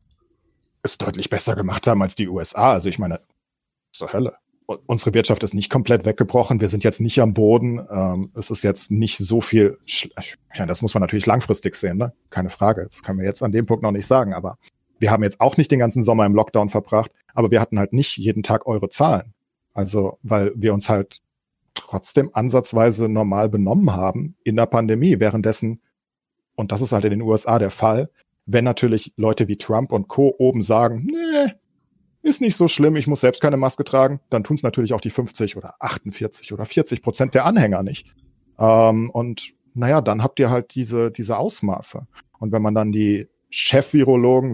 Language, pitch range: German, 105-130 Hz